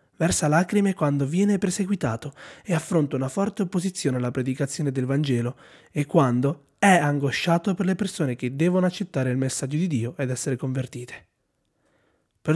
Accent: native